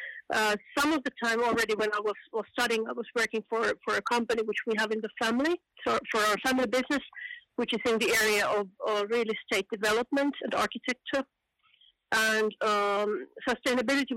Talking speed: 185 wpm